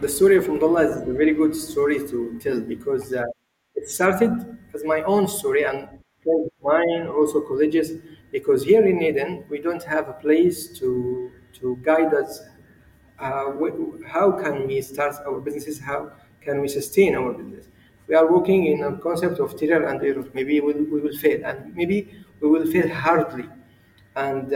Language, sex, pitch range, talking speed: English, male, 140-195 Hz, 170 wpm